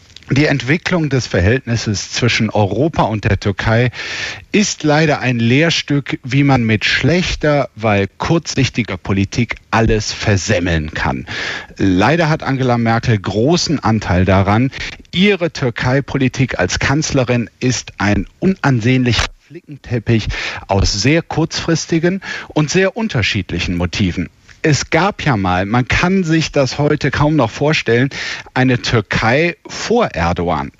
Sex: male